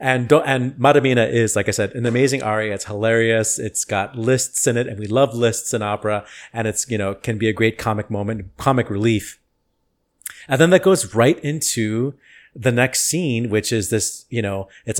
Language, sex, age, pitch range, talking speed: English, male, 30-49, 105-125 Hz, 205 wpm